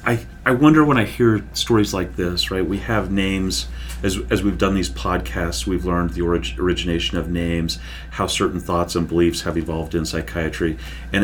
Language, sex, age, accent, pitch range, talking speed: English, male, 40-59, American, 80-100 Hz, 185 wpm